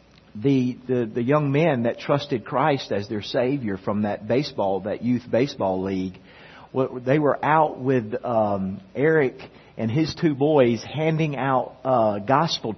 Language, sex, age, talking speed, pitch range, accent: English, male, 40-59, 155 wpm, 115-145 Hz, American